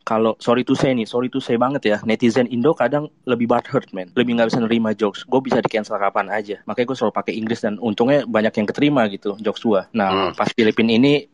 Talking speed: 230 wpm